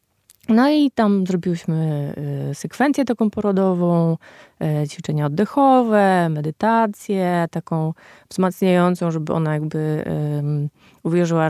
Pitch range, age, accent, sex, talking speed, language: 160-215 Hz, 20-39, native, female, 85 wpm, Polish